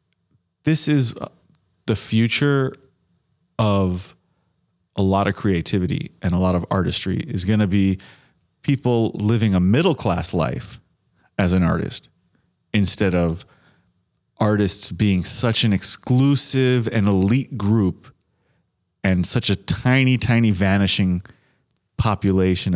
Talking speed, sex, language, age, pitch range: 115 wpm, male, English, 30-49, 95-120 Hz